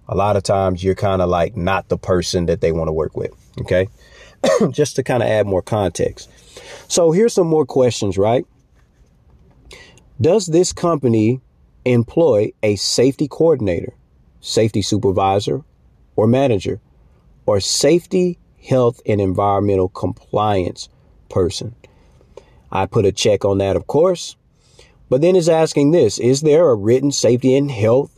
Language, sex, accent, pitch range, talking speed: English, male, American, 95-130 Hz, 145 wpm